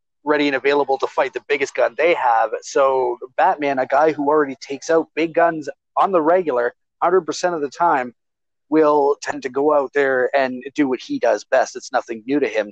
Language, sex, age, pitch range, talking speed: English, male, 30-49, 120-150 Hz, 210 wpm